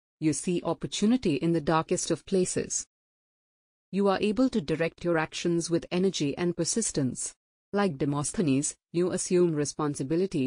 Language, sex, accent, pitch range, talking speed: English, female, Indian, 155-195 Hz, 140 wpm